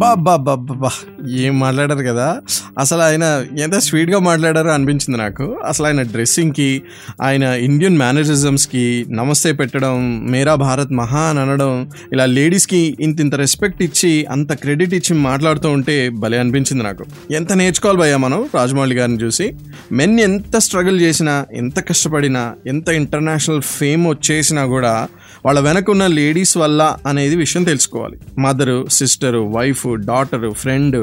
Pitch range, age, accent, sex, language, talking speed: 130-165 Hz, 20-39, native, male, Telugu, 140 wpm